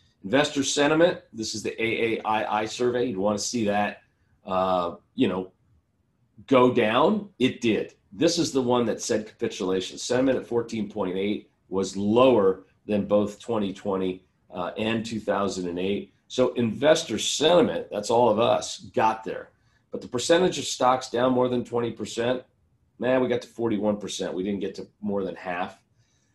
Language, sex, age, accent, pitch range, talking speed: English, male, 40-59, American, 100-125 Hz, 150 wpm